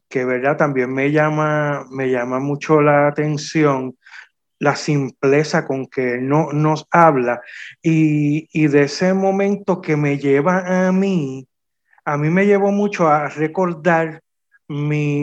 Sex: male